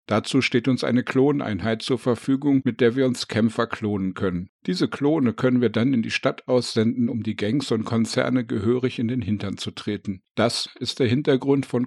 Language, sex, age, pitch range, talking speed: German, male, 50-69, 105-130 Hz, 195 wpm